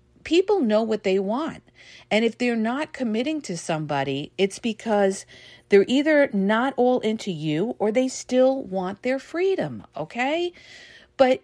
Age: 50-69